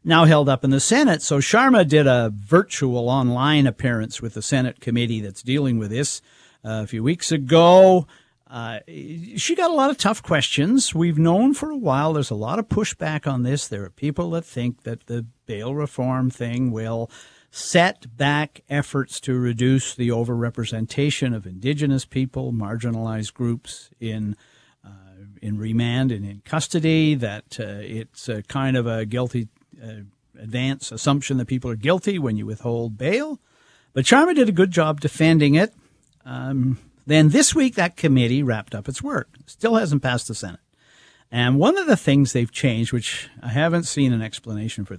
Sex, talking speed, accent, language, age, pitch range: male, 175 wpm, American, English, 50-69, 115-150 Hz